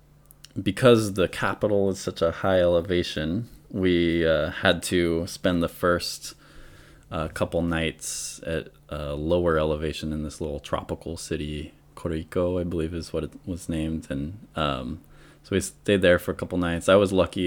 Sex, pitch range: male, 80-100 Hz